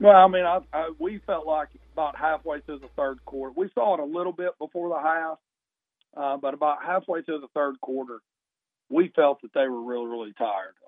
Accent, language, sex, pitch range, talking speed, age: American, English, male, 125-160 Hz, 205 wpm, 40-59